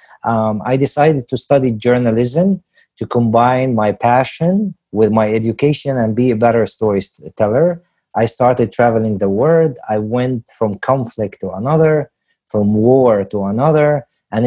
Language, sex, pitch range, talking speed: English, male, 105-125 Hz, 140 wpm